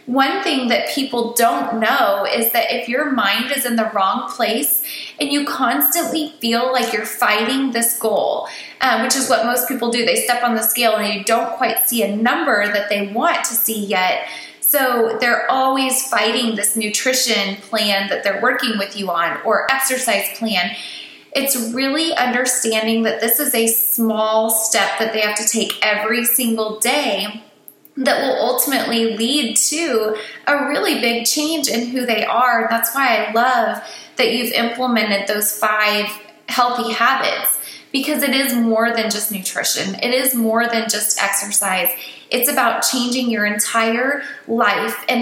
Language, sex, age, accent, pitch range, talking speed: English, female, 20-39, American, 215-265 Hz, 170 wpm